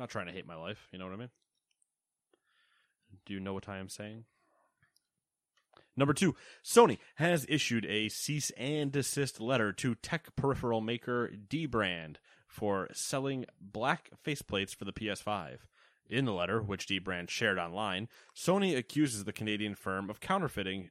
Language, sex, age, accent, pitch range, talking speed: English, male, 30-49, American, 100-130 Hz, 160 wpm